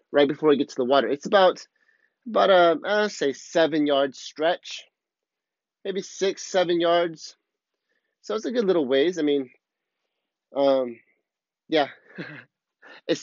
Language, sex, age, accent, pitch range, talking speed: English, male, 30-49, American, 140-185 Hz, 140 wpm